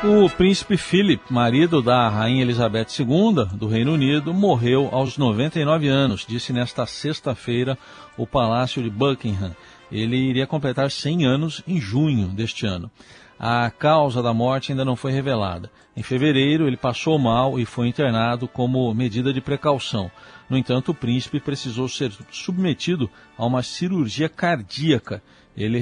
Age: 50-69